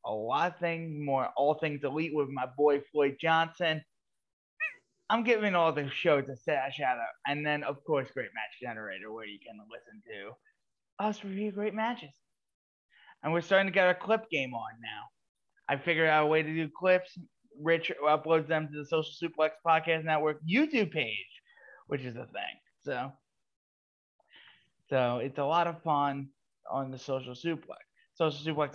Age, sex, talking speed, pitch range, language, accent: 20-39, male, 170 wpm, 130-175 Hz, English, American